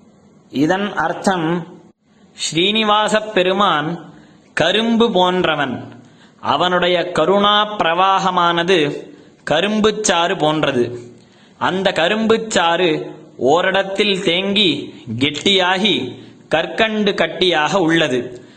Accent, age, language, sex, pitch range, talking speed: native, 20-39, Tamil, male, 170-195 Hz, 65 wpm